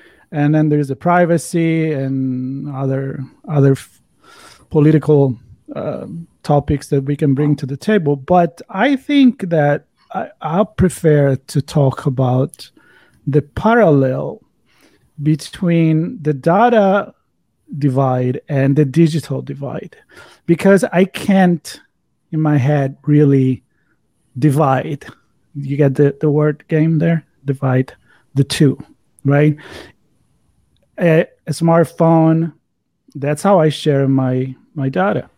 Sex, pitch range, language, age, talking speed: male, 135-160 Hz, English, 40-59, 115 wpm